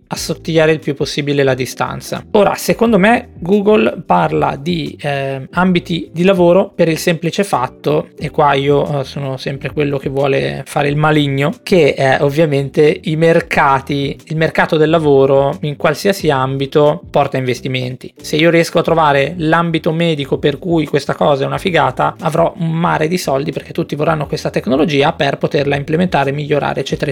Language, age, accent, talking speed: Italian, 20-39, native, 160 wpm